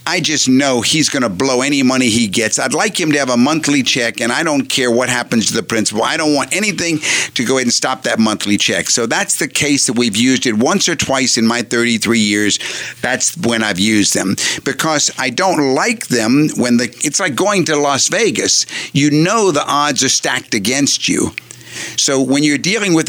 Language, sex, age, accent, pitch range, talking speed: English, male, 50-69, American, 120-155 Hz, 225 wpm